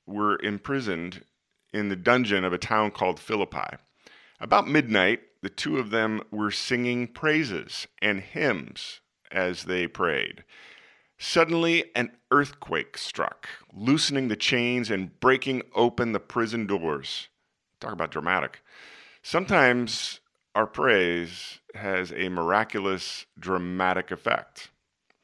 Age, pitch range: 40-59, 95-125 Hz